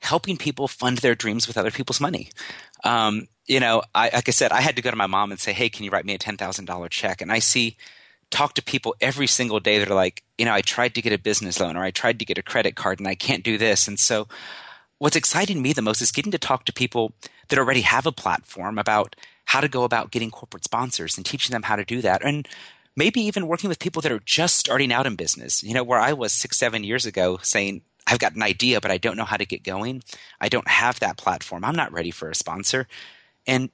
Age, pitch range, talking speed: 30-49, 105-135 Hz, 260 wpm